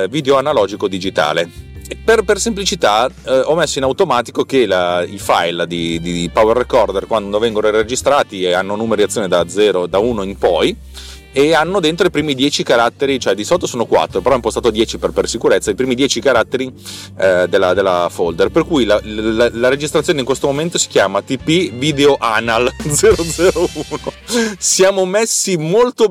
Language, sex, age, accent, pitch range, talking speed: Italian, male, 30-49, native, 105-150 Hz, 170 wpm